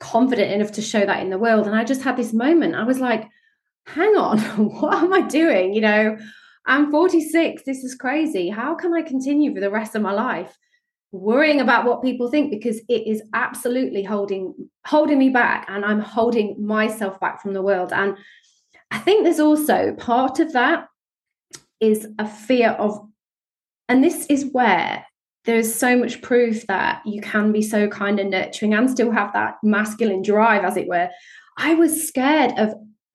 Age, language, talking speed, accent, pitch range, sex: 20-39, English, 185 wpm, British, 205-260 Hz, female